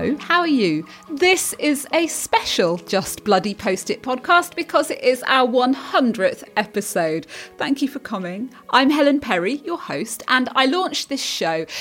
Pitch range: 195-285 Hz